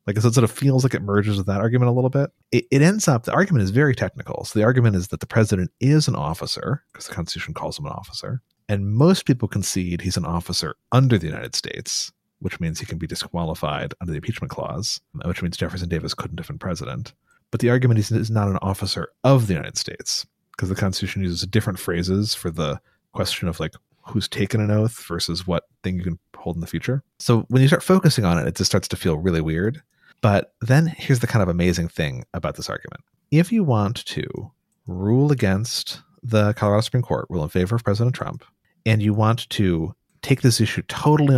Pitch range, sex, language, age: 90-125 Hz, male, English, 30-49